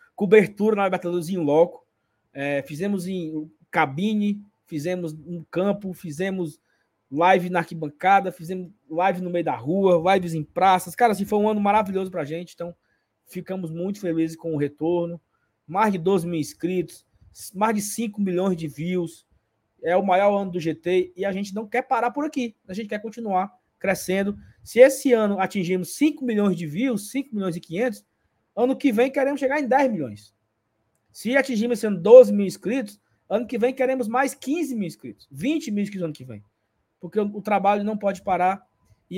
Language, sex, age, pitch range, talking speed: Portuguese, male, 20-39, 160-210 Hz, 180 wpm